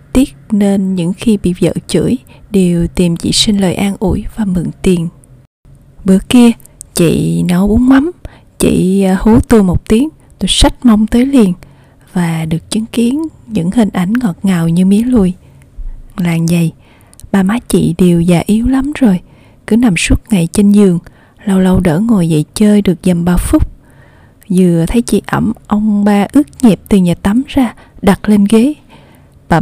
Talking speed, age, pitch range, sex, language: 175 wpm, 20-39, 175-220 Hz, female, Vietnamese